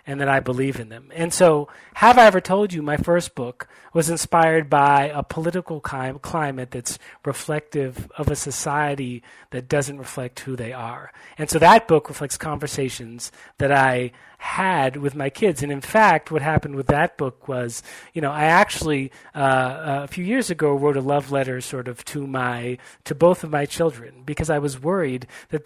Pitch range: 135-165 Hz